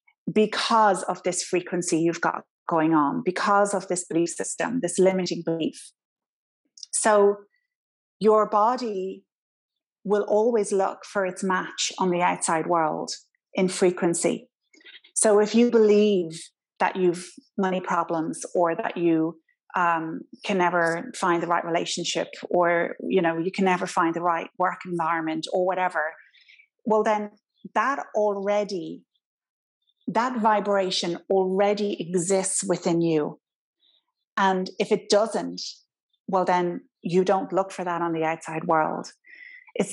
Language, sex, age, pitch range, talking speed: English, female, 30-49, 175-210 Hz, 130 wpm